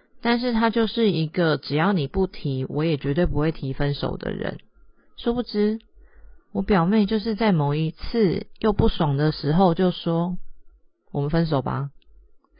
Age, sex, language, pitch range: 30-49, female, Chinese, 145-195 Hz